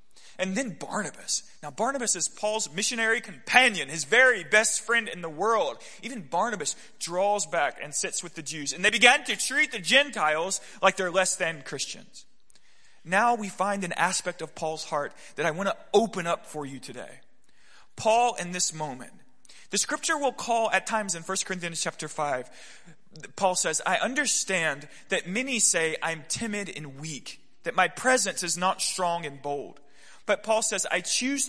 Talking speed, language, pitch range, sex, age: 175 wpm, English, 165-225 Hz, male, 30-49